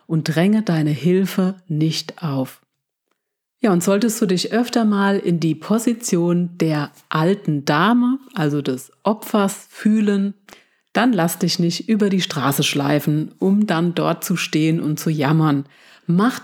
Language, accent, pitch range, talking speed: German, German, 155-205 Hz, 145 wpm